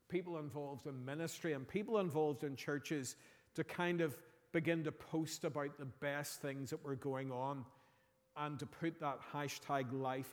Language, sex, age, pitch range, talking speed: English, male, 40-59, 135-165 Hz, 170 wpm